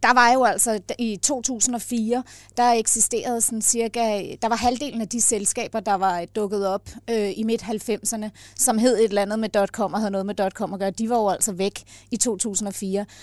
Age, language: 30-49, Danish